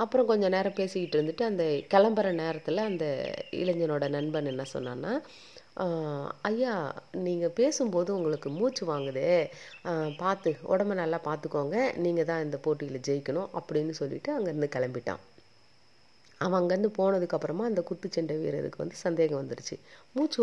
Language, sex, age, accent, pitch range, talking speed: Tamil, female, 30-49, native, 145-190 Hz, 125 wpm